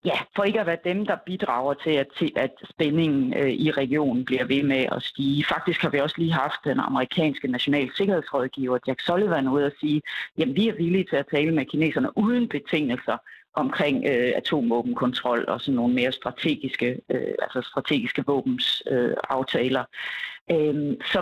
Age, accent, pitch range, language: 40-59, native, 140-185 Hz, Danish